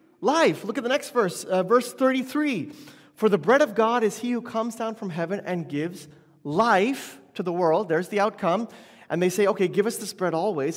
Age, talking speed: 30-49, 215 wpm